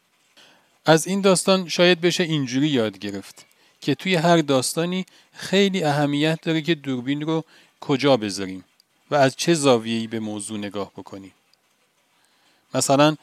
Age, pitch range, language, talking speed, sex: 40-59, 125-160 Hz, Persian, 130 wpm, male